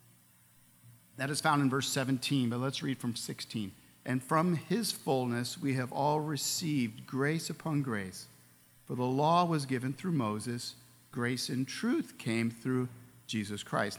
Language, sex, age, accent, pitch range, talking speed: English, male, 50-69, American, 110-155 Hz, 155 wpm